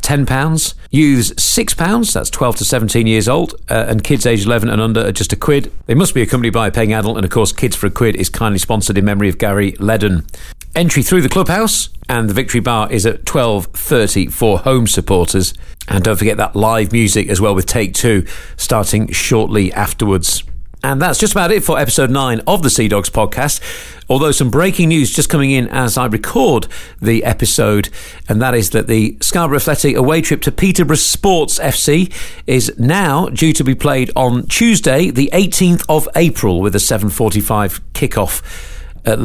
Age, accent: 50-69, British